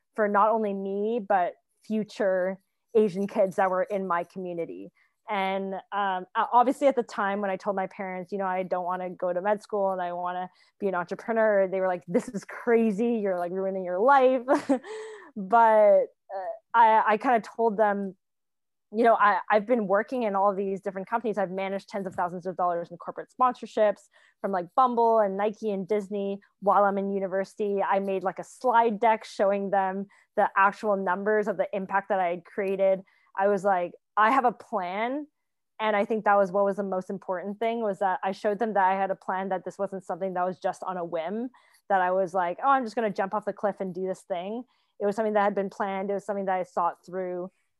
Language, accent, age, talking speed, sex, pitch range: English, American, 20-39, 220 wpm, female, 190-220 Hz